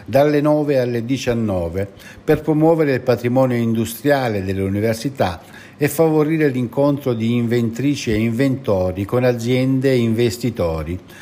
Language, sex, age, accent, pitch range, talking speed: Italian, male, 60-79, native, 100-130 Hz, 120 wpm